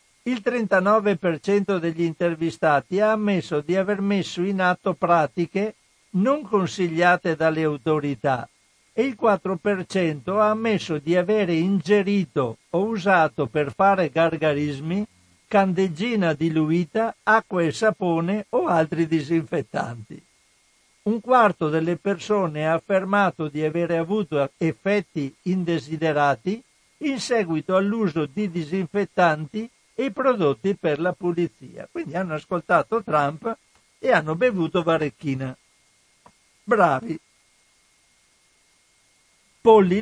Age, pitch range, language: 60-79, 160-205 Hz, Italian